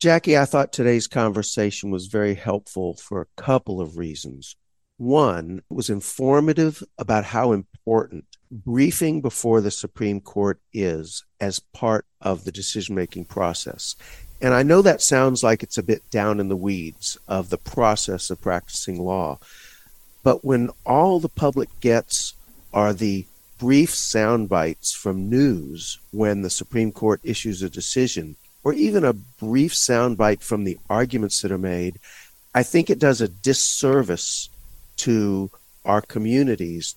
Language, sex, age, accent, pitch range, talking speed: English, male, 50-69, American, 95-120 Hz, 145 wpm